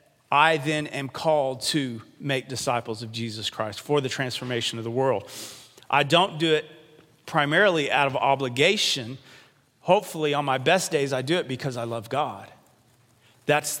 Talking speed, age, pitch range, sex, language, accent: 160 wpm, 40-59, 115-155 Hz, male, English, American